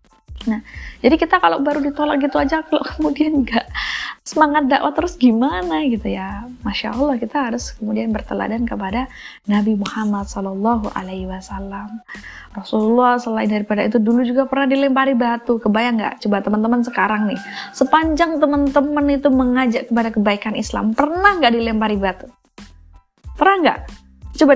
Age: 20-39